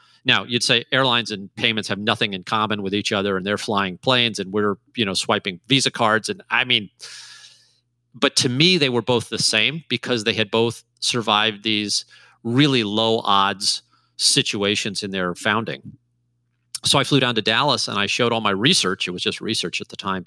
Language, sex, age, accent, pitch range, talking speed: English, male, 40-59, American, 110-135 Hz, 200 wpm